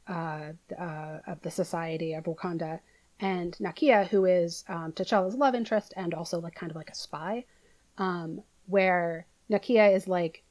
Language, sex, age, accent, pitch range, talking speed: English, female, 30-49, American, 170-205 Hz, 160 wpm